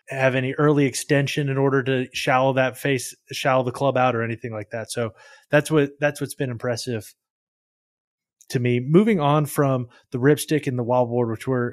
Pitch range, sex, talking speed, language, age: 125-140 Hz, male, 190 wpm, English, 20-39